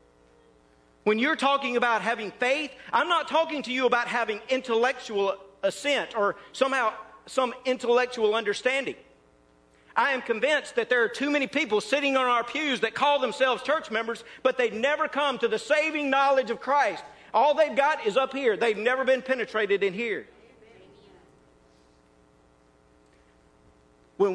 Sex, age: male, 50-69